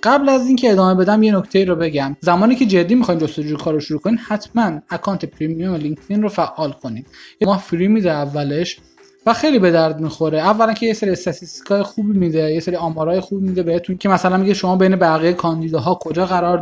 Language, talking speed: Persian, 200 wpm